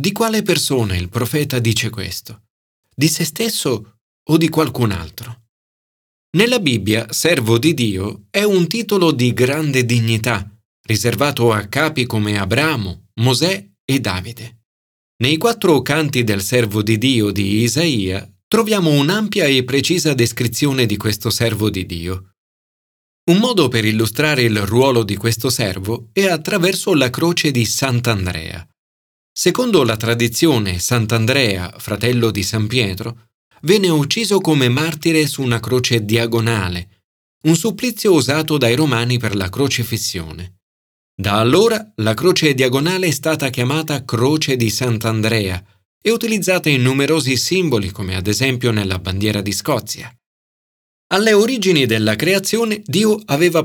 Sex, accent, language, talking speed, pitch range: male, native, Italian, 135 wpm, 110-155 Hz